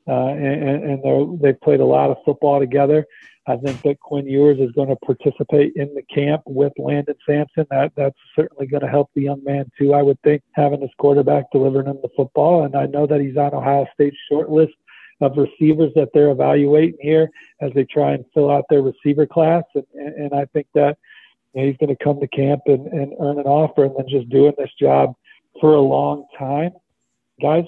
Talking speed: 210 wpm